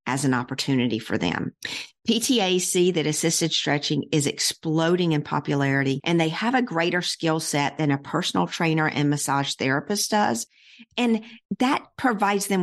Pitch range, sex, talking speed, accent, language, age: 145-180 Hz, female, 150 wpm, American, English, 50-69